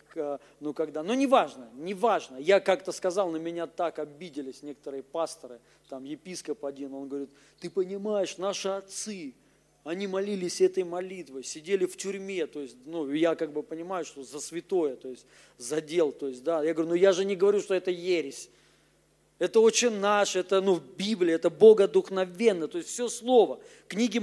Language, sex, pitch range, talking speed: Russian, male, 170-245 Hz, 180 wpm